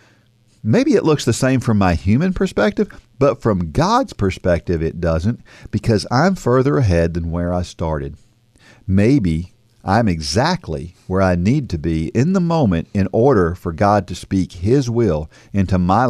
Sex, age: male, 50-69